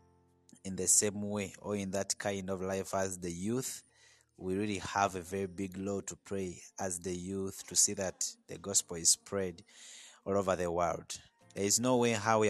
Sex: male